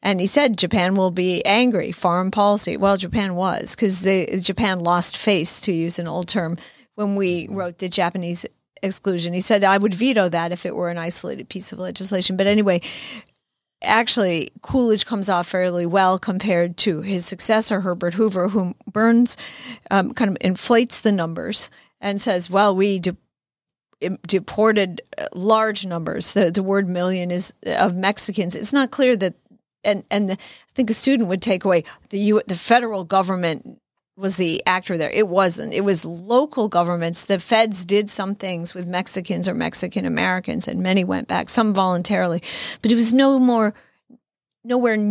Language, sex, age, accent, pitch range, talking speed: English, female, 40-59, American, 180-215 Hz, 170 wpm